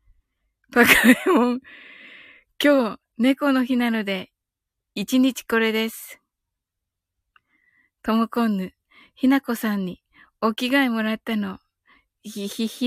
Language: Japanese